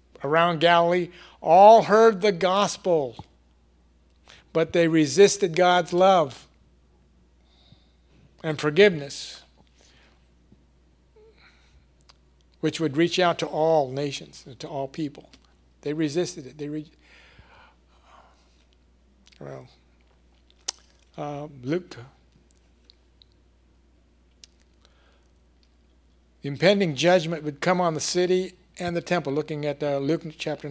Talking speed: 95 wpm